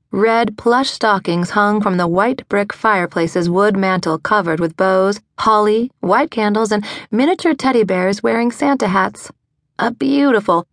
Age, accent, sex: 30-49, American, female